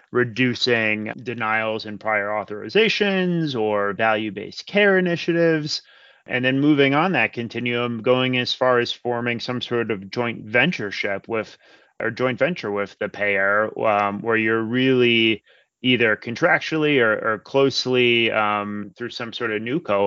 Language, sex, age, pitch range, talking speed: English, male, 30-49, 105-125 Hz, 140 wpm